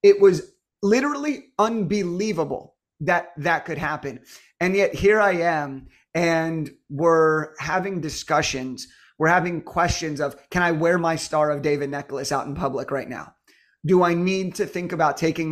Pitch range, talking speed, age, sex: 150-190 Hz, 160 wpm, 30-49, male